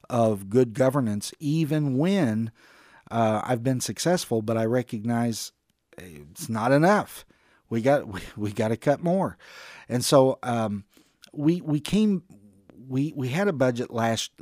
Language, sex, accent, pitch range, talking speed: English, male, American, 110-140 Hz, 145 wpm